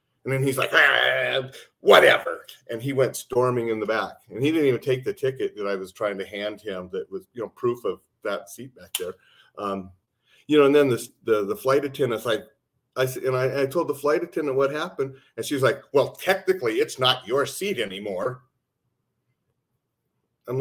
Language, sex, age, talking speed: English, male, 40-59, 200 wpm